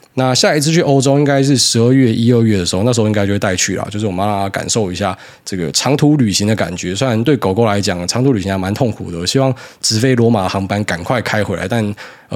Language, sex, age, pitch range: Chinese, male, 20-39, 105-135 Hz